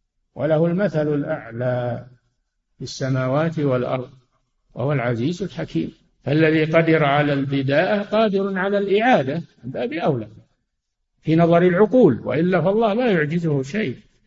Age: 60-79